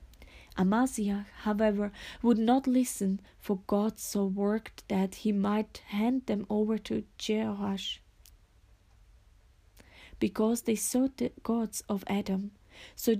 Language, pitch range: English, 195-230 Hz